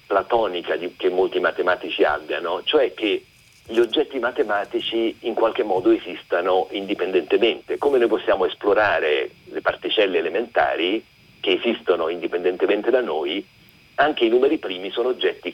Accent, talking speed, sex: native, 125 wpm, male